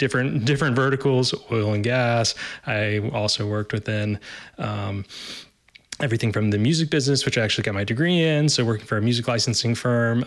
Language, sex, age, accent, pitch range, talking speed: English, male, 20-39, American, 115-135 Hz, 175 wpm